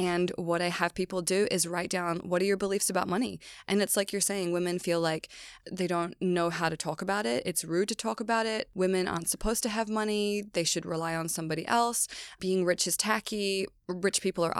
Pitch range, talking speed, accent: 170-195 Hz, 230 wpm, American